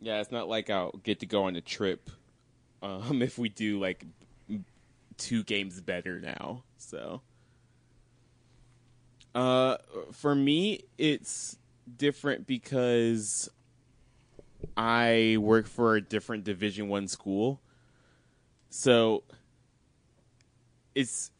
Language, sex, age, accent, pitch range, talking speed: English, male, 20-39, American, 100-125 Hz, 105 wpm